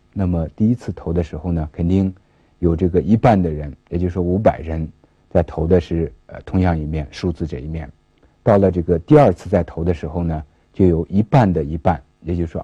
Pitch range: 80-95 Hz